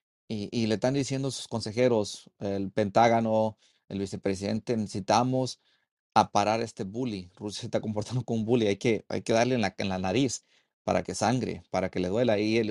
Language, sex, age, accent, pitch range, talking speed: English, male, 40-59, Mexican, 105-140 Hz, 205 wpm